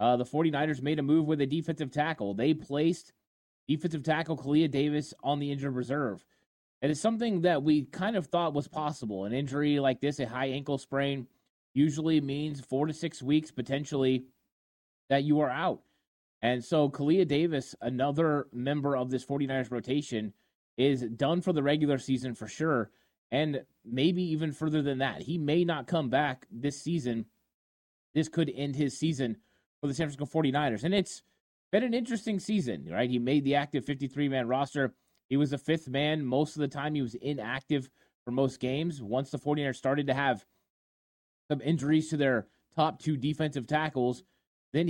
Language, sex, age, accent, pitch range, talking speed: English, male, 20-39, American, 130-155 Hz, 180 wpm